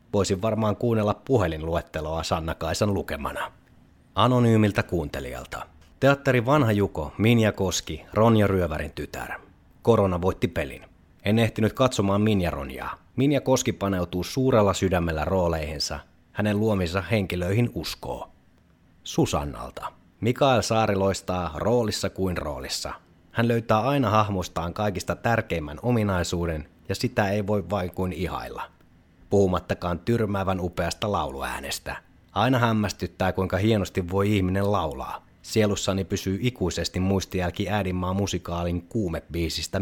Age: 30-49